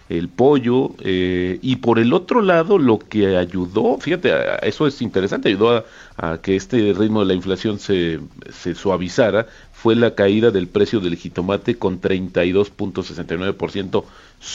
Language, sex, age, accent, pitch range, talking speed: Spanish, male, 40-59, Mexican, 95-120 Hz, 150 wpm